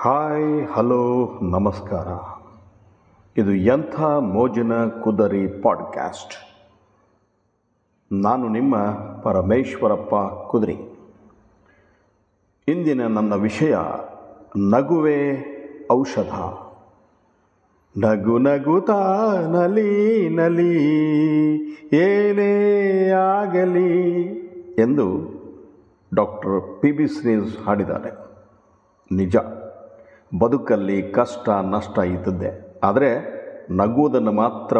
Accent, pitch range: native, 105-160 Hz